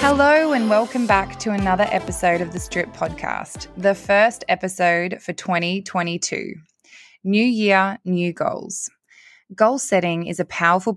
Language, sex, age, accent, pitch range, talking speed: English, female, 20-39, Australian, 160-205 Hz, 135 wpm